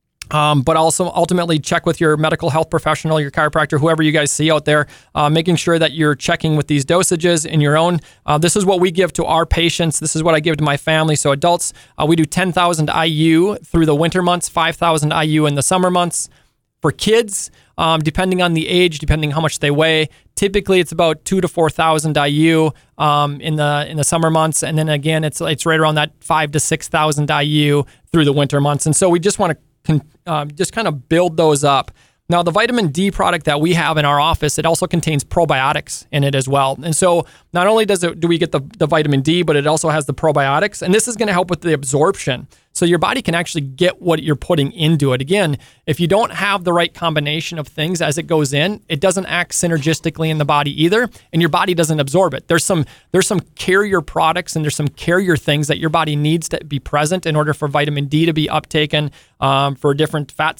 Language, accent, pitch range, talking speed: English, American, 150-170 Hz, 235 wpm